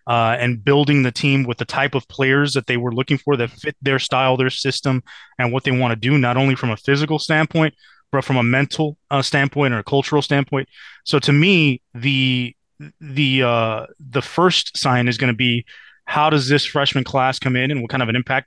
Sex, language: male, English